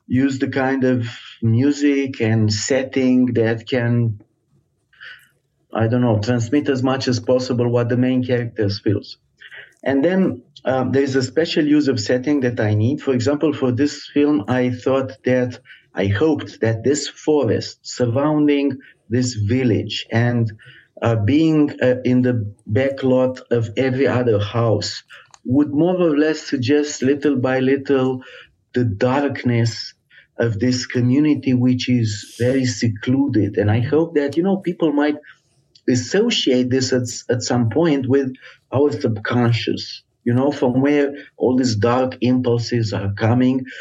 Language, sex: English, male